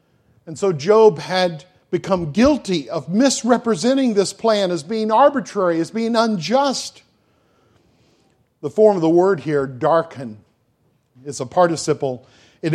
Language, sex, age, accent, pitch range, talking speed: English, male, 50-69, American, 135-185 Hz, 125 wpm